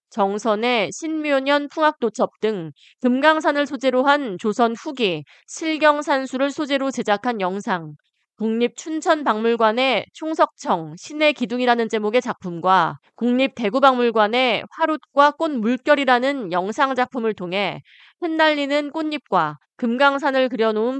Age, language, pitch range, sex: 20-39, Korean, 200-280 Hz, female